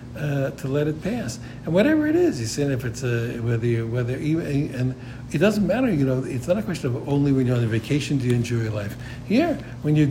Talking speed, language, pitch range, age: 260 wpm, English, 120-155 Hz, 60-79